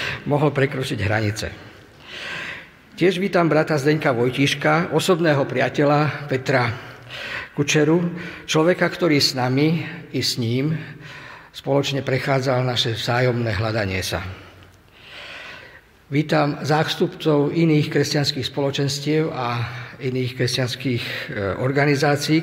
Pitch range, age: 125-150 Hz, 50-69